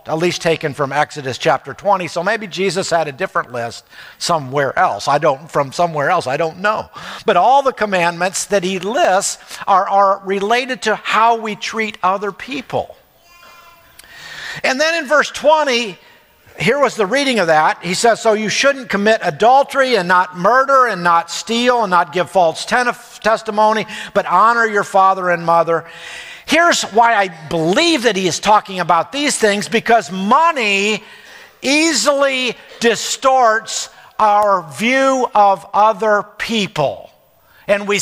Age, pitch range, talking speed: 50-69, 180-240 Hz, 155 wpm